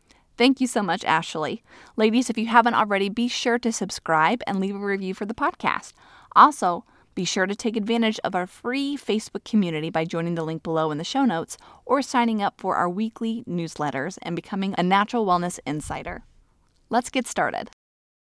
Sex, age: female, 30-49